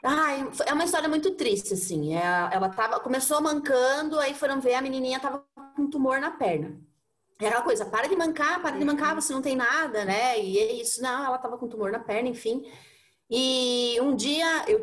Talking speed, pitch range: 200 wpm, 215-310 Hz